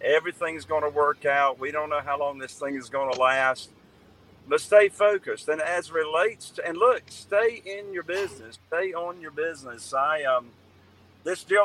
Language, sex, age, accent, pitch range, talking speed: English, male, 50-69, American, 130-165 Hz, 180 wpm